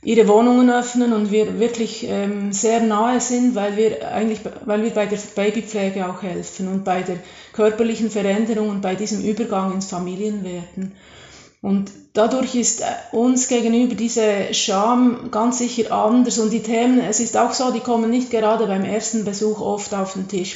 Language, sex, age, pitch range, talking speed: German, female, 30-49, 200-230 Hz, 170 wpm